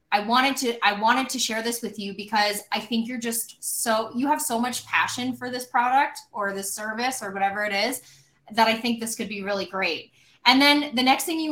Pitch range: 210-250 Hz